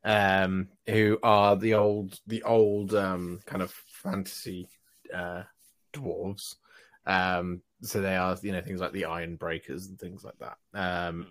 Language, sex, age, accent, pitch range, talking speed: English, male, 30-49, British, 90-105 Hz, 155 wpm